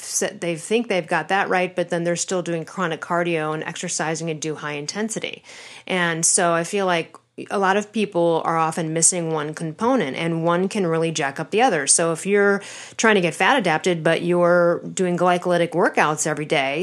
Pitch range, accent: 165-200 Hz, American